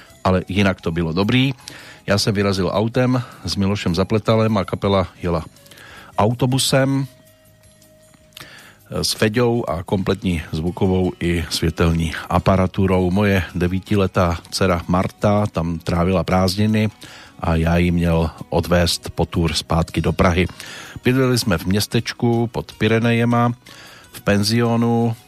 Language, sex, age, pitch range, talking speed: Slovak, male, 40-59, 90-110 Hz, 115 wpm